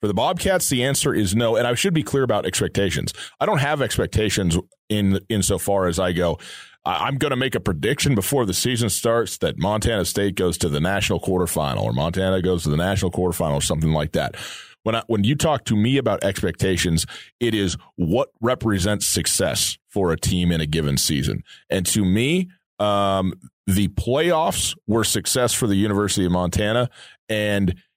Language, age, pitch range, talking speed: English, 30-49, 90-115 Hz, 190 wpm